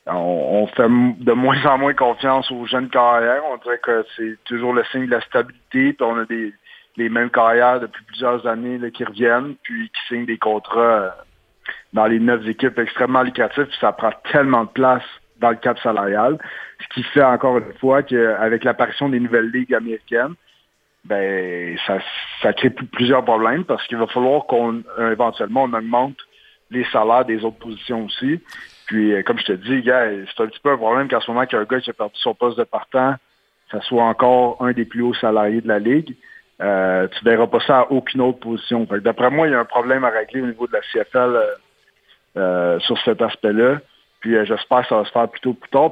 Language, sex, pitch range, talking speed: French, male, 110-125 Hz, 210 wpm